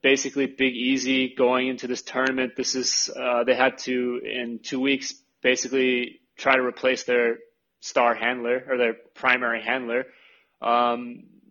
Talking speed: 150 wpm